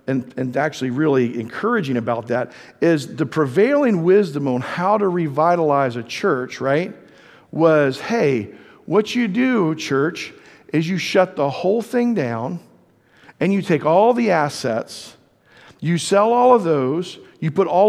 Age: 50-69